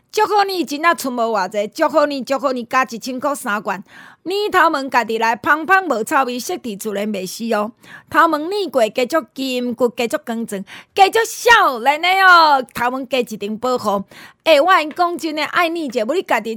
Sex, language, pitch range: female, Chinese, 230-310 Hz